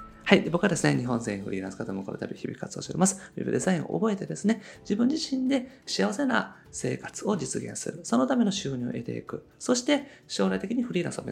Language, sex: Japanese, male